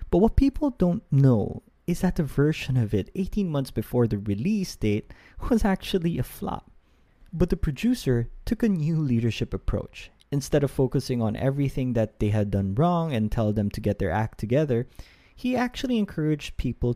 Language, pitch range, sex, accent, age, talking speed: English, 105-160 Hz, male, Filipino, 20-39, 180 wpm